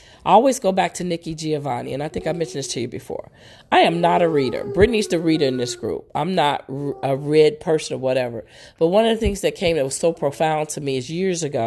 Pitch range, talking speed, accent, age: 140-175 Hz, 255 wpm, American, 40-59